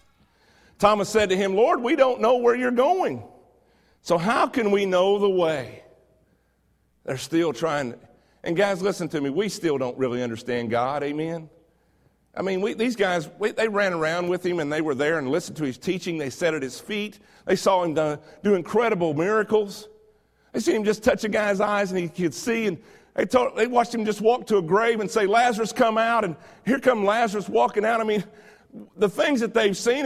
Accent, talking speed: American, 215 wpm